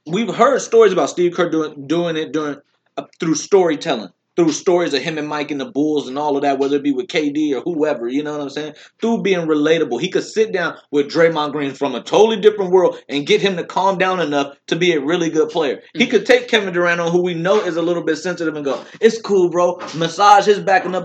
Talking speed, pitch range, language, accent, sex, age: 250 wpm, 155-230 Hz, English, American, male, 30-49